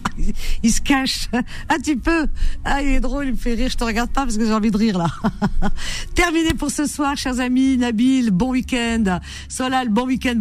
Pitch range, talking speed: 175-250 Hz, 215 wpm